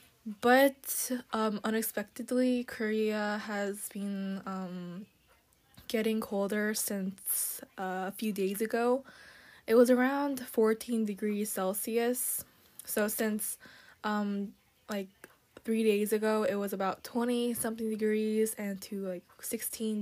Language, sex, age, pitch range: Korean, female, 10-29, 200-230 Hz